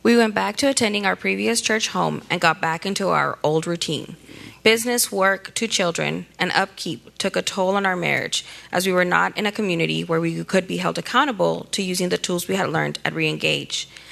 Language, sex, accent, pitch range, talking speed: English, female, American, 170-220 Hz, 215 wpm